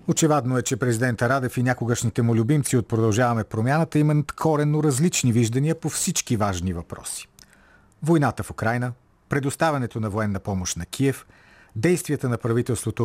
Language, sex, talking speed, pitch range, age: Bulgarian, male, 145 wpm, 110-150 Hz, 40-59